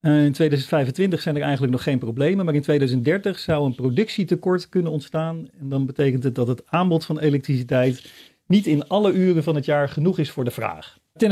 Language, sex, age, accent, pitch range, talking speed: Dutch, male, 40-59, Dutch, 135-175 Hz, 200 wpm